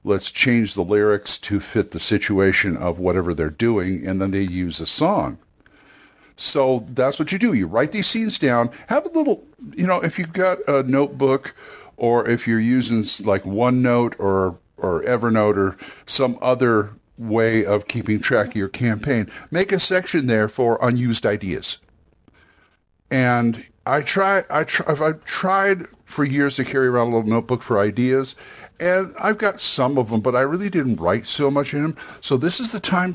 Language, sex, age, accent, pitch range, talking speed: English, male, 50-69, American, 110-160 Hz, 185 wpm